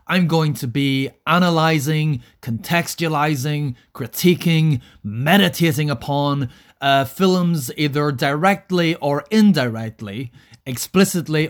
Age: 30-49